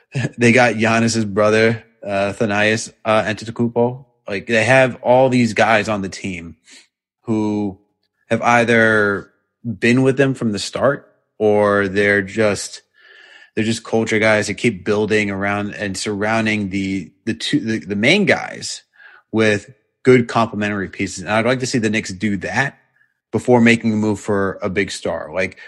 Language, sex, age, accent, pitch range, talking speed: English, male, 30-49, American, 100-115 Hz, 160 wpm